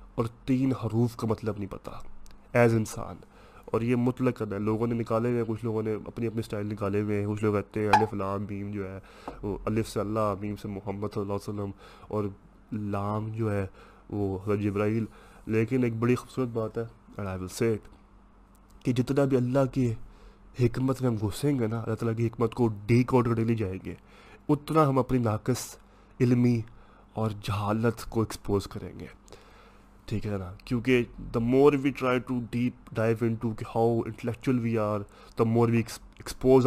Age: 20-39